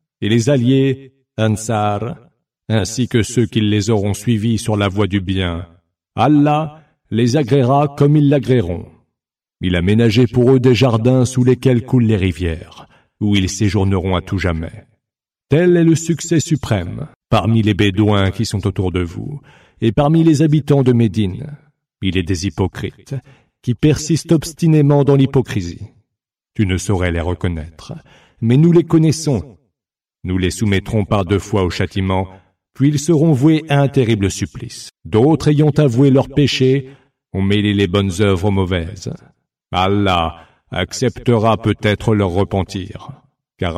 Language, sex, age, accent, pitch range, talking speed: English, male, 50-69, French, 95-135 Hz, 150 wpm